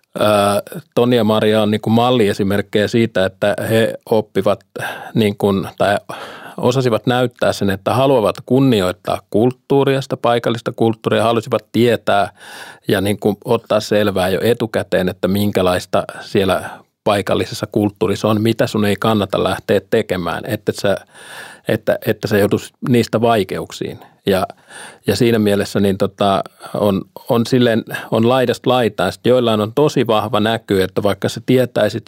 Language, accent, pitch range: Finnish, native, 100-115 Hz